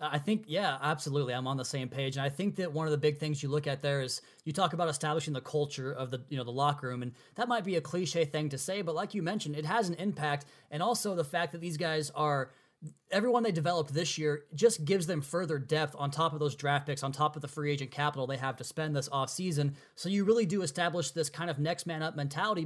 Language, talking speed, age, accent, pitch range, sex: English, 270 wpm, 20-39, American, 145-175 Hz, male